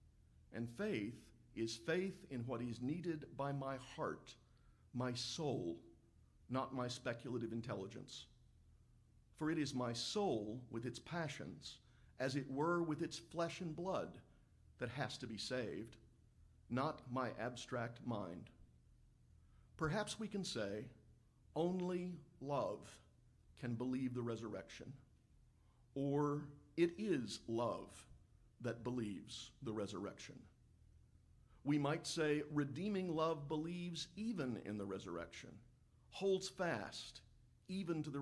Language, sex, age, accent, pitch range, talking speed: English, male, 50-69, American, 115-155 Hz, 120 wpm